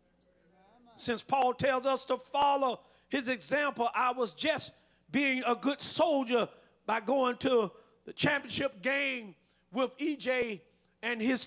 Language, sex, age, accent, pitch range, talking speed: English, male, 50-69, American, 180-270 Hz, 130 wpm